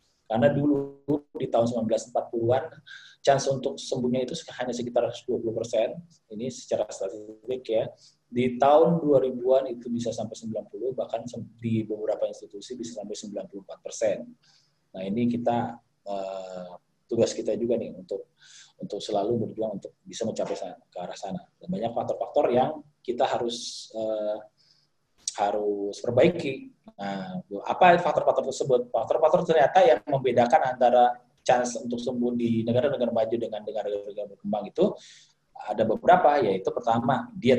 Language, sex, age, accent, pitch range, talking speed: Indonesian, male, 20-39, native, 110-150 Hz, 130 wpm